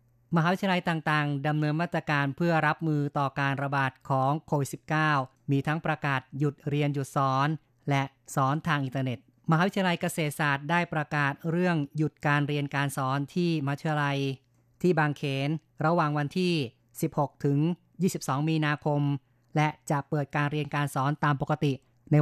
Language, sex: Thai, female